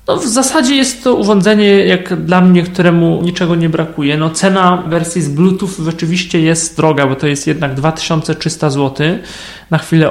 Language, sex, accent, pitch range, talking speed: Polish, male, native, 150-180 Hz, 170 wpm